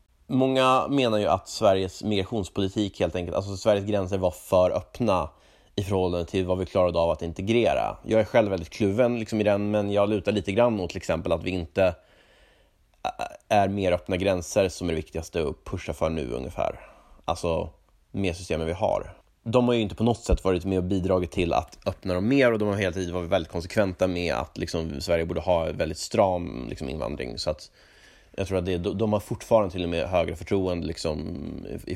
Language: Swedish